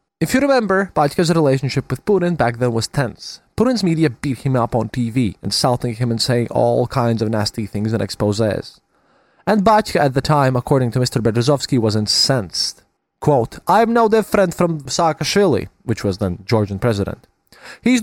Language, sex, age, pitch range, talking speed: English, male, 20-39, 125-200 Hz, 175 wpm